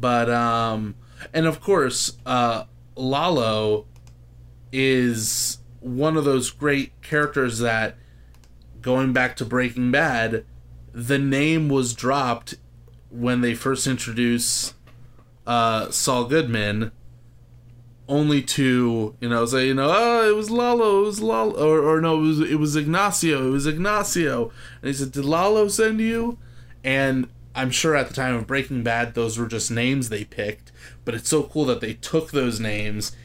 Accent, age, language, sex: American, 20-39, English, male